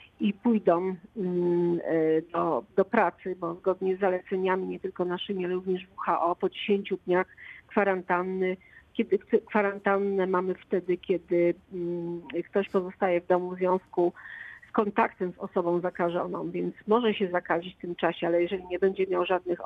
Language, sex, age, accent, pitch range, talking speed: Polish, female, 40-59, native, 180-205 Hz, 145 wpm